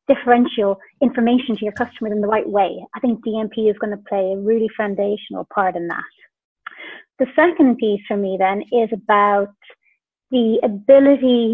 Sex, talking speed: female, 165 wpm